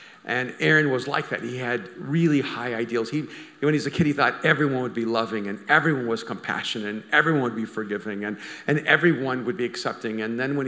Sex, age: male, 50-69